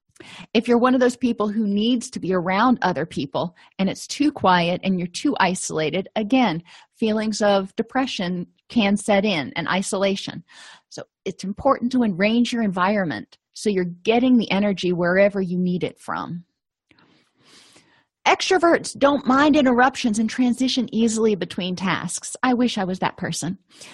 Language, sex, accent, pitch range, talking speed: English, female, American, 185-245 Hz, 155 wpm